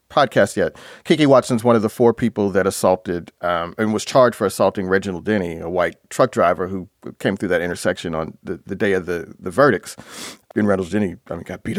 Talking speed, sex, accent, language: 220 wpm, male, American, English